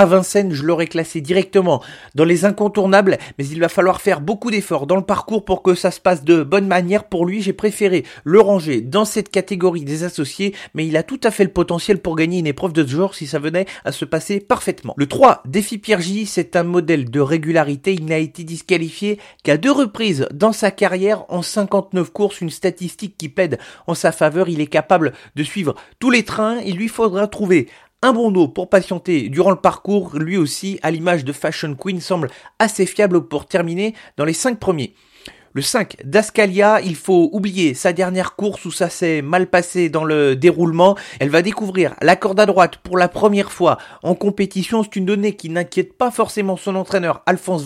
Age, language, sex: 40-59, French, male